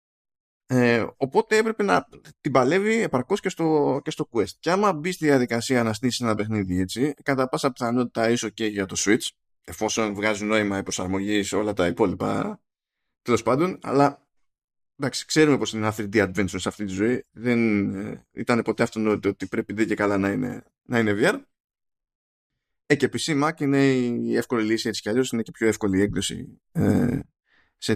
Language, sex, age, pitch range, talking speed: Greek, male, 20-39, 105-140 Hz, 190 wpm